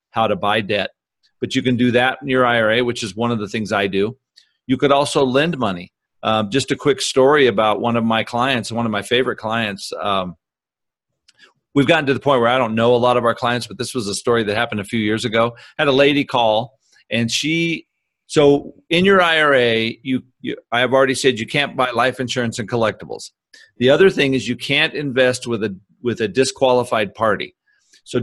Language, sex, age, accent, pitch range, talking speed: English, male, 40-59, American, 115-140 Hz, 220 wpm